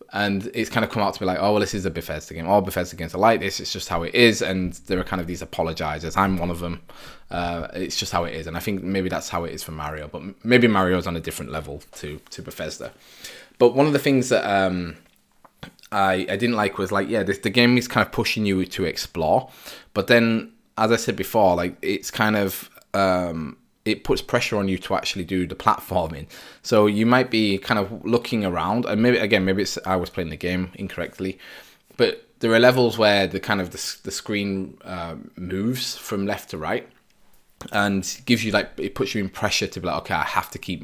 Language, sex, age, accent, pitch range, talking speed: English, male, 20-39, British, 90-115 Hz, 240 wpm